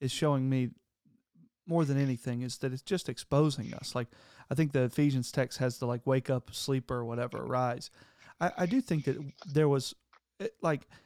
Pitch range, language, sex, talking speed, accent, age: 125-150 Hz, English, male, 190 wpm, American, 40-59